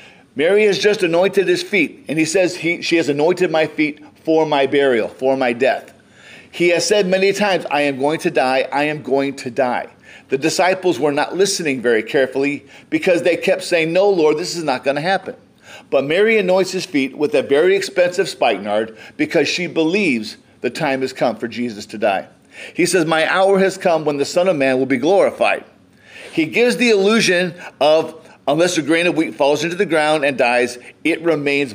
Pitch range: 145-195 Hz